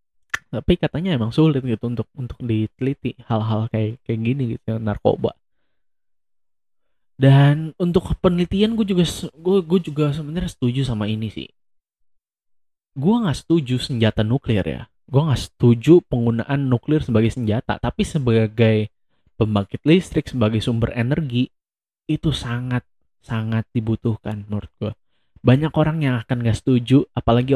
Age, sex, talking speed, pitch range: 20-39, male, 130 wpm, 110-140 Hz